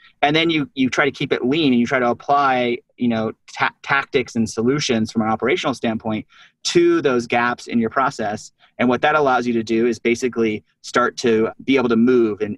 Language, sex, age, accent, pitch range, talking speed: English, male, 30-49, American, 115-135 Hz, 220 wpm